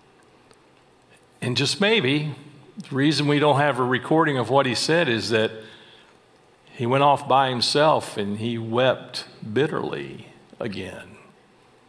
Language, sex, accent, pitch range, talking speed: English, male, American, 120-155 Hz, 130 wpm